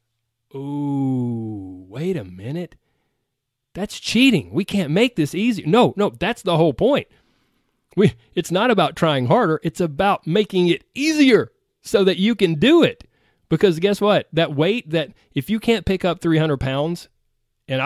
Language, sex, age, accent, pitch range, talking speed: English, male, 30-49, American, 120-185 Hz, 160 wpm